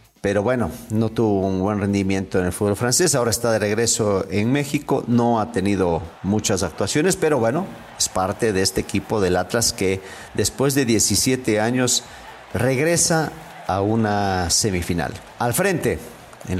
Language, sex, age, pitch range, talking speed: English, male, 40-59, 100-125 Hz, 155 wpm